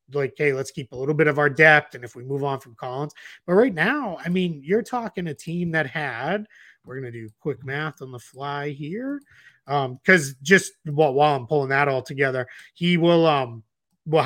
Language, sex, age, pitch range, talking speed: English, male, 30-49, 130-170 Hz, 220 wpm